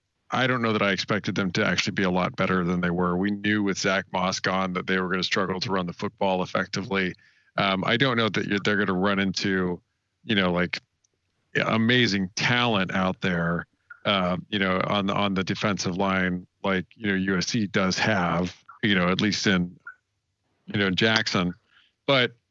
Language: English